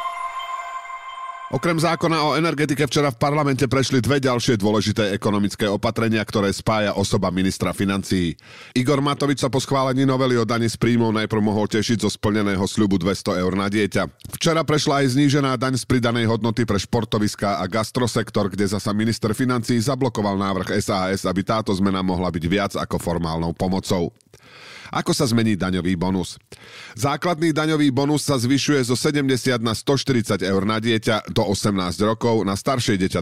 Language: Slovak